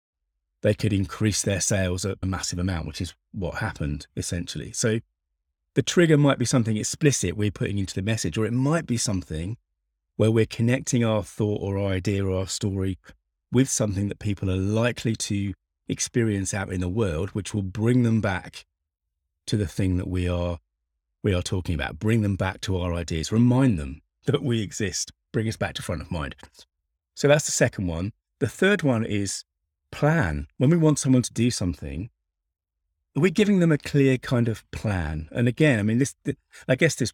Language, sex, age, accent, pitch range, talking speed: English, male, 30-49, British, 85-115 Hz, 195 wpm